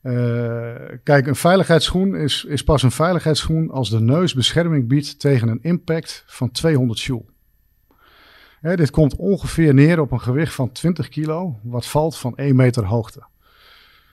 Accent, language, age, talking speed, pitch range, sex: Dutch, Dutch, 50-69, 155 wpm, 120-150 Hz, male